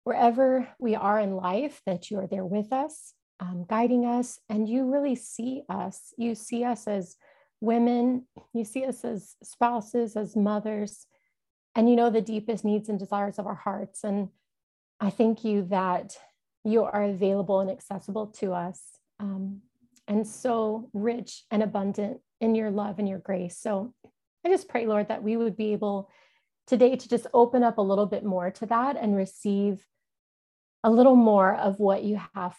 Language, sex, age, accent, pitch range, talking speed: English, female, 30-49, American, 195-235 Hz, 175 wpm